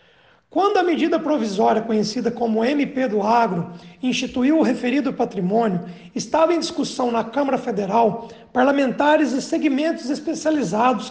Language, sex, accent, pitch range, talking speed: Portuguese, male, Brazilian, 230-295 Hz, 125 wpm